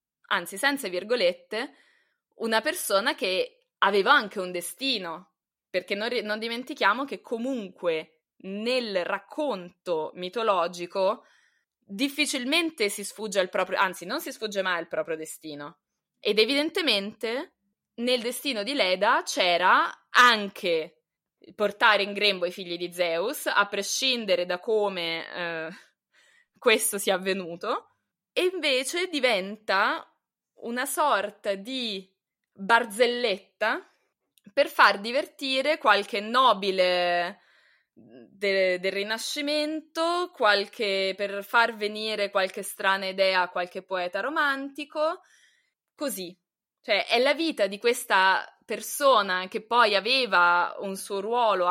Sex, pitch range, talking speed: female, 185-255 Hz, 110 wpm